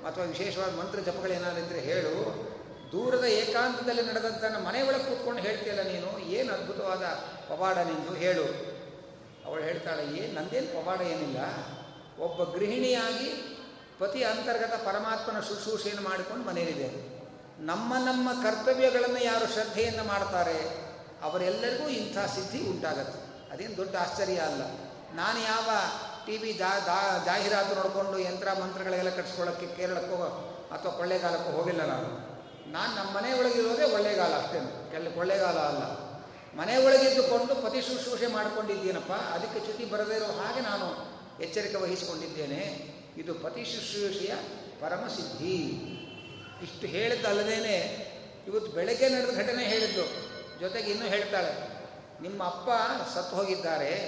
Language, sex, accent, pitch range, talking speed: Kannada, male, native, 180-235 Hz, 110 wpm